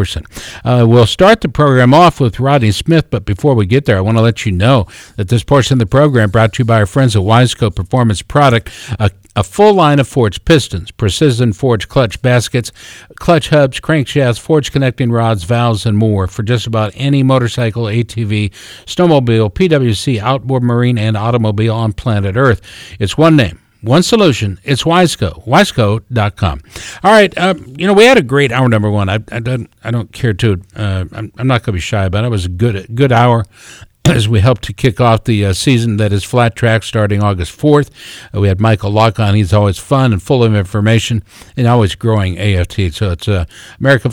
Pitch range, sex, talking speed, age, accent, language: 105-130 Hz, male, 205 wpm, 60-79, American, English